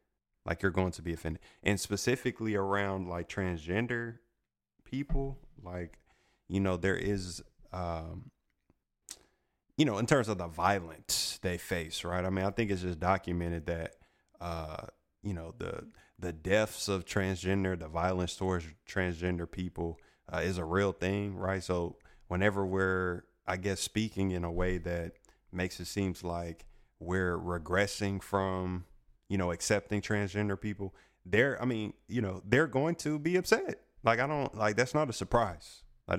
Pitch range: 90-100 Hz